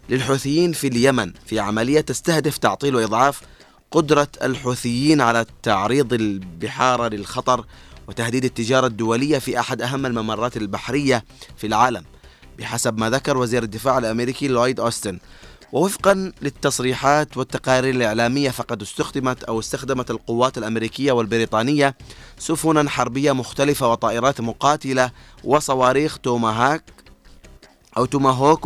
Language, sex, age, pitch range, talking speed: Arabic, male, 30-49, 115-140 Hz, 110 wpm